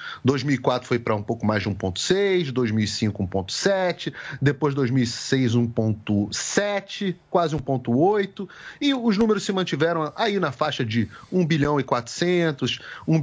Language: Portuguese